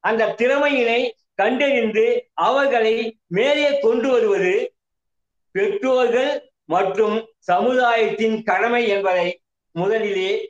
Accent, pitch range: native, 230-295 Hz